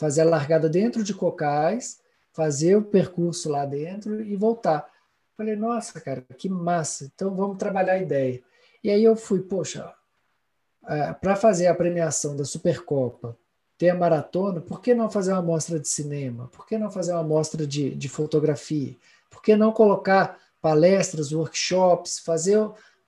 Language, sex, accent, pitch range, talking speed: Portuguese, male, Brazilian, 150-195 Hz, 160 wpm